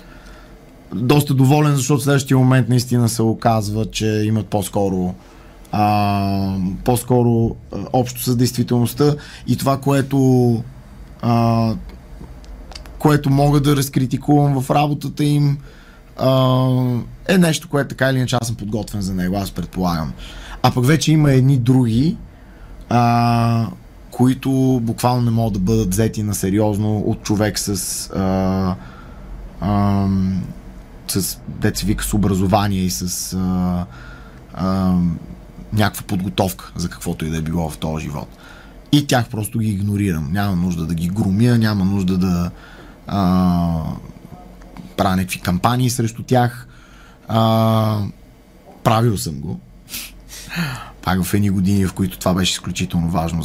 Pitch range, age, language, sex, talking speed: 90-125 Hz, 20-39, Bulgarian, male, 125 wpm